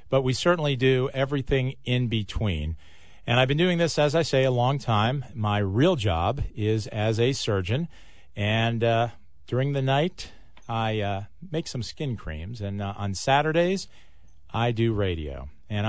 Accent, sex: American, male